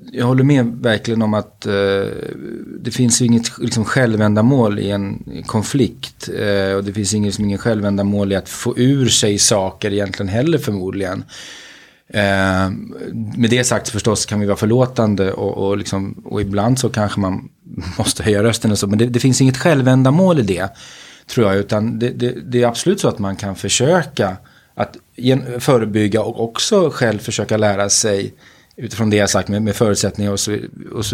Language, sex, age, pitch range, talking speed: Swedish, male, 30-49, 100-120 Hz, 175 wpm